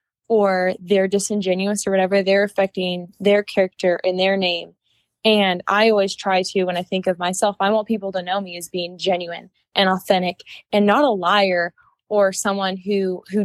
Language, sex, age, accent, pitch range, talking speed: English, female, 10-29, American, 190-220 Hz, 185 wpm